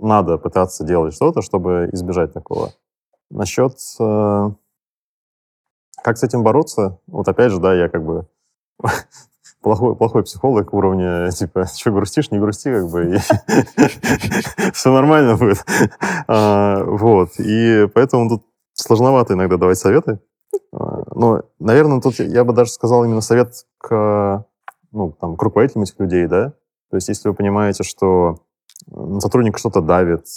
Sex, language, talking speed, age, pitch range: male, Russian, 125 wpm, 20-39, 90-110 Hz